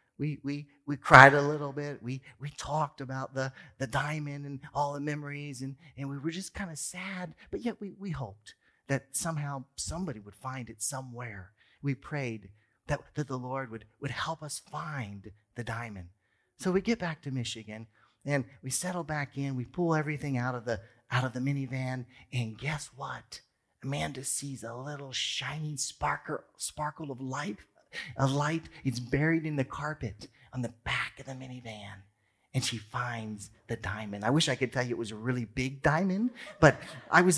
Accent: American